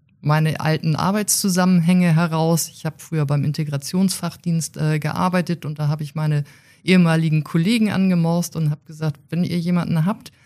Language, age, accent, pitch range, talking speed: German, 50-69, German, 150-185 Hz, 150 wpm